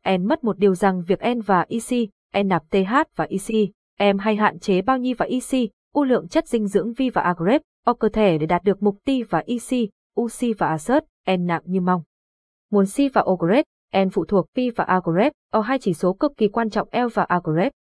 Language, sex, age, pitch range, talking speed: Vietnamese, female, 20-39, 185-240 Hz, 230 wpm